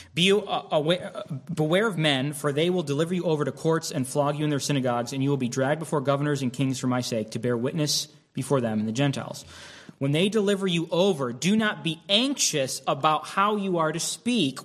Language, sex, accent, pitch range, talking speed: English, male, American, 120-155 Hz, 225 wpm